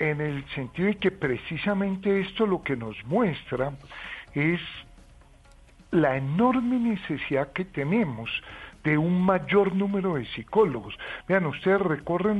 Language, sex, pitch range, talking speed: Spanish, male, 155-210 Hz, 125 wpm